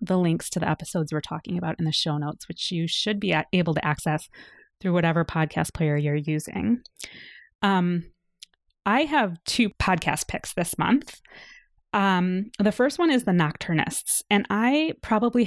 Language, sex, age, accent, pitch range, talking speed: English, female, 20-39, American, 160-205 Hz, 165 wpm